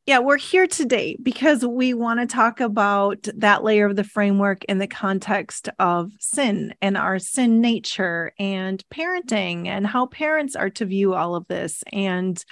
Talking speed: 175 wpm